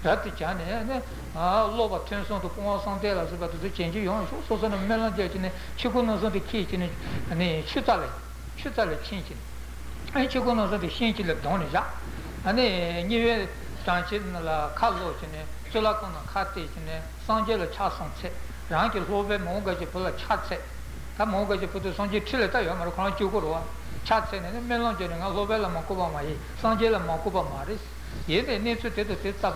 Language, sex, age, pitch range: Italian, male, 60-79, 170-225 Hz